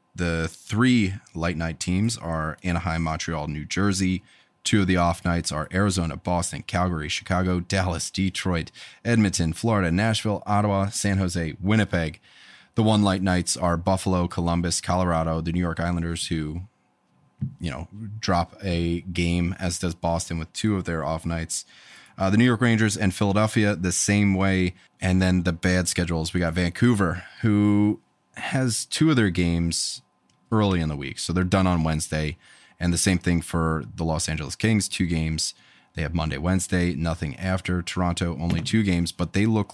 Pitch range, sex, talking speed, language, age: 85-100 Hz, male, 170 wpm, English, 20-39